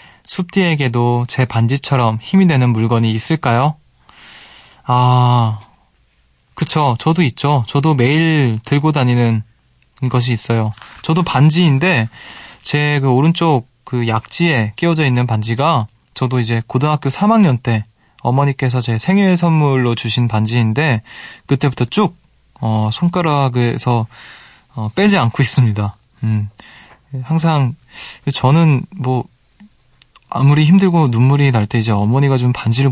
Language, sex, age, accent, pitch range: Korean, male, 20-39, native, 115-145 Hz